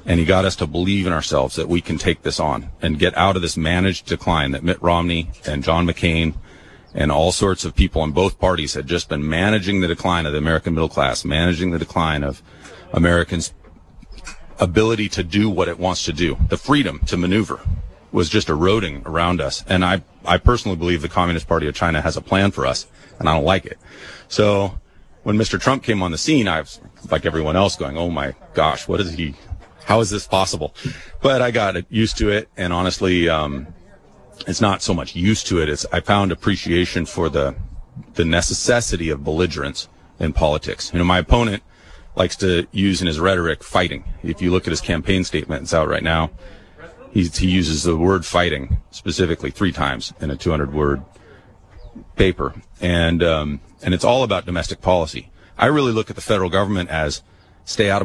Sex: male